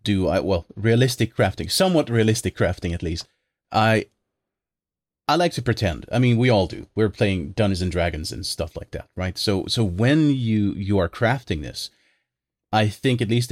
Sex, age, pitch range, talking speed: male, 30-49, 90-110 Hz, 185 wpm